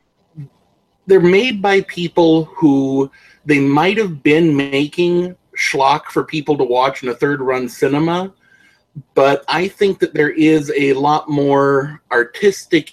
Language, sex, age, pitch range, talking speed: English, male, 30-49, 135-170 Hz, 135 wpm